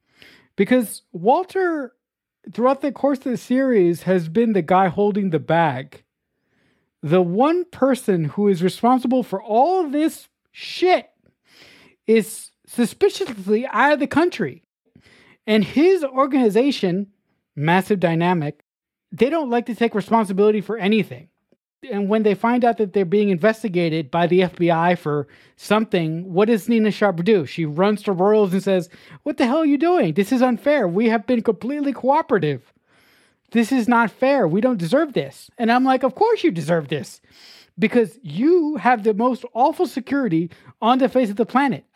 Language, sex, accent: English, male, American